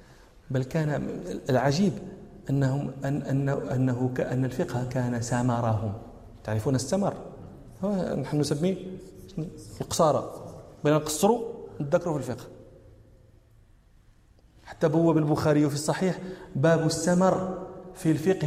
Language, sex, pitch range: Arabic, male, 145-190 Hz